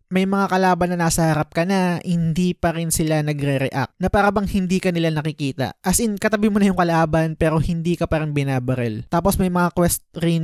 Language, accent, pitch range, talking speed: Filipino, native, 145-180 Hz, 200 wpm